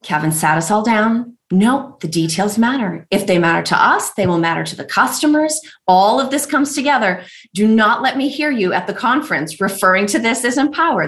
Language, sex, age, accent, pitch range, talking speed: English, female, 30-49, American, 175-245 Hz, 210 wpm